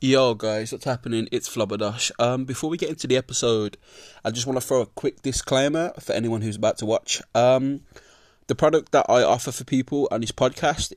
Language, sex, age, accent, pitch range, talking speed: English, male, 20-39, British, 120-140 Hz, 200 wpm